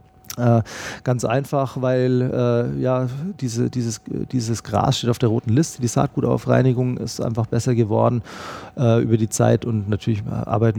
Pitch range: 110-130 Hz